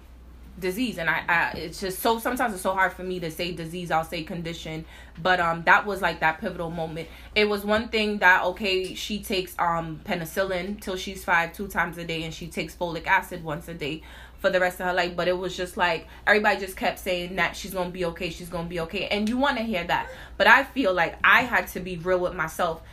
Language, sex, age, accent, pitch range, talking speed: English, female, 20-39, American, 170-195 Hz, 250 wpm